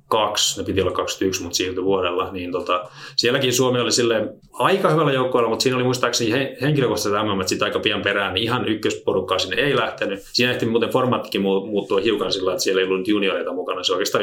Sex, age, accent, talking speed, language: male, 30-49, native, 195 wpm, Finnish